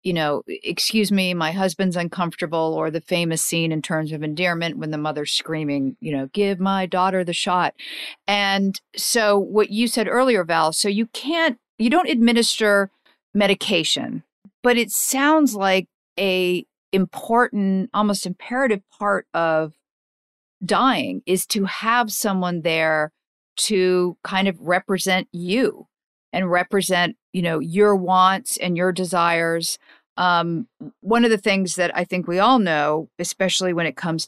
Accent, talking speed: American, 150 wpm